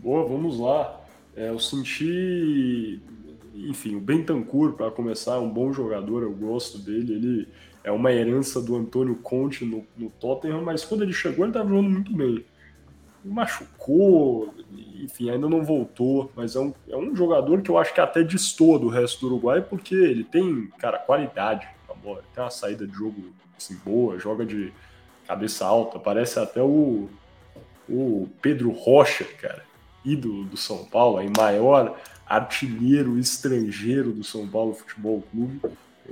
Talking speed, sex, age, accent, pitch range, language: 160 wpm, male, 10-29, Brazilian, 110-145 Hz, Portuguese